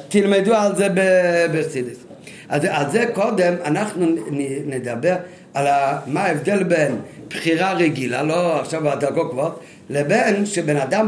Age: 50-69